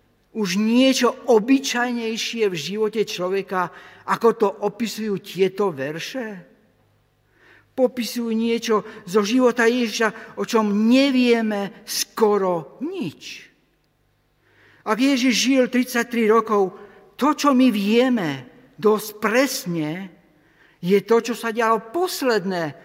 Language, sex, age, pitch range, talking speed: Slovak, male, 50-69, 195-245 Hz, 100 wpm